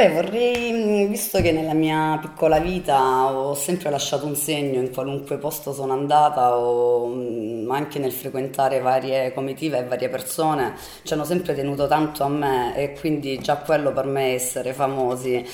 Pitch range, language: 130-155 Hz, Italian